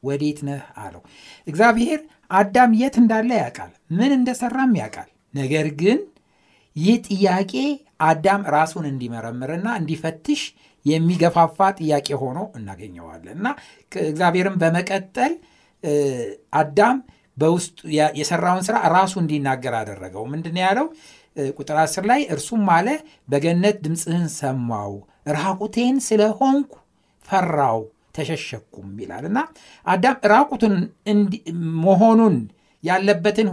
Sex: male